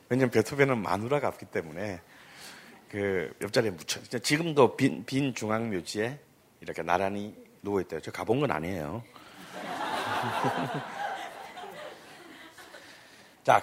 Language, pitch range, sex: Korean, 105-165 Hz, male